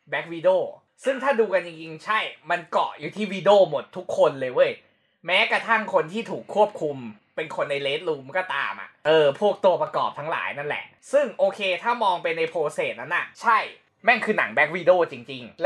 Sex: male